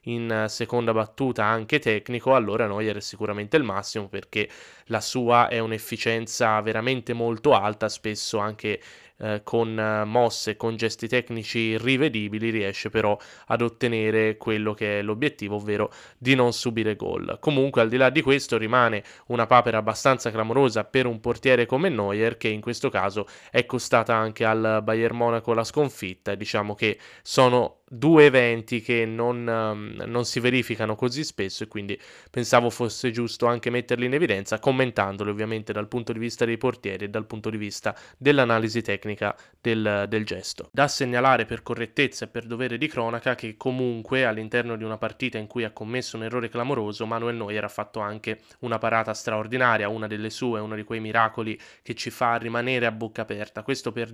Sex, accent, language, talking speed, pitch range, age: male, native, Italian, 175 wpm, 110-120 Hz, 20-39